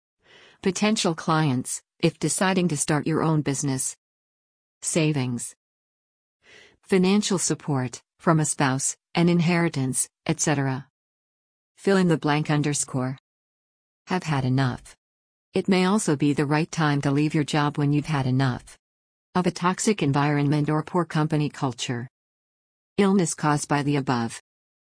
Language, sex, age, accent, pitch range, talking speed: English, female, 50-69, American, 135-170 Hz, 130 wpm